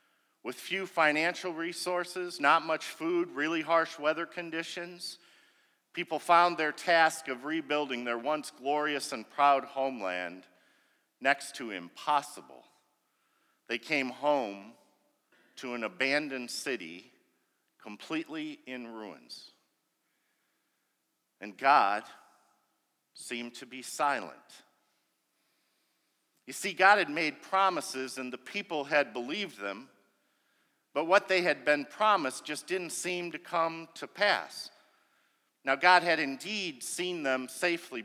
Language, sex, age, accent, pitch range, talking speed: English, male, 50-69, American, 135-185 Hz, 115 wpm